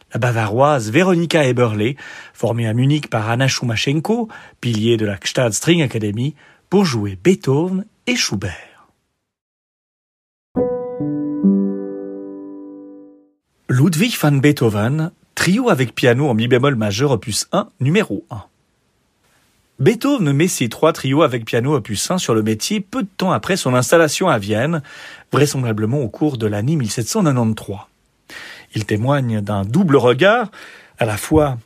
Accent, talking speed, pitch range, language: French, 130 wpm, 115-155 Hz, French